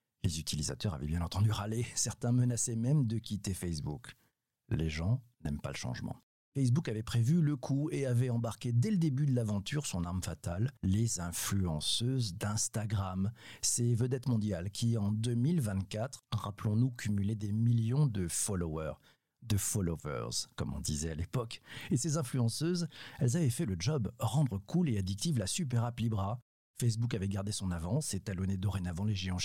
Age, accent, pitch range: 50-69, French, 90-120 Hz